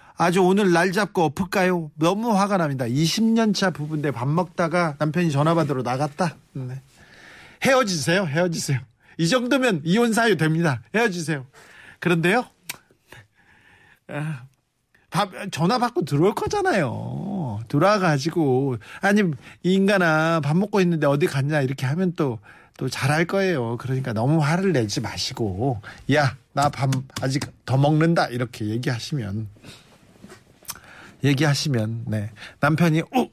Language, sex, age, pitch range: Korean, male, 40-59, 130-170 Hz